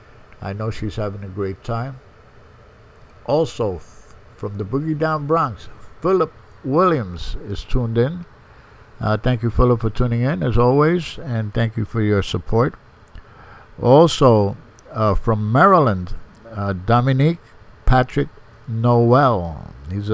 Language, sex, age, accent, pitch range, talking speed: English, male, 60-79, American, 105-125 Hz, 130 wpm